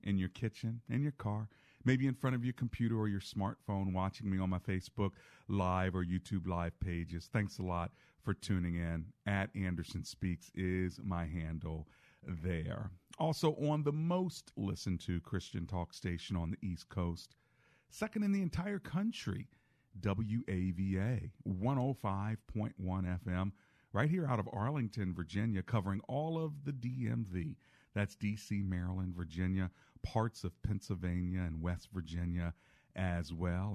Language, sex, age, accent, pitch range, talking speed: English, male, 50-69, American, 90-125 Hz, 145 wpm